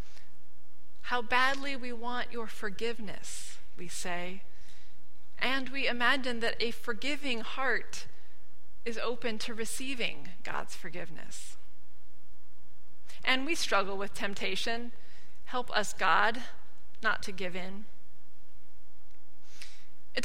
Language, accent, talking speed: English, American, 100 wpm